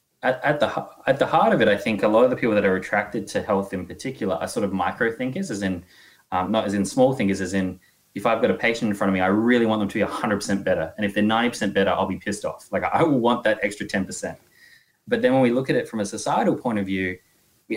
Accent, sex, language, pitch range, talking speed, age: Australian, male, English, 100-110 Hz, 275 wpm, 20-39